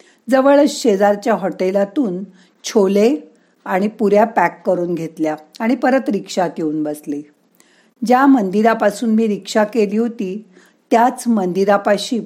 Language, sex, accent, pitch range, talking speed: Marathi, female, native, 190-235 Hz, 110 wpm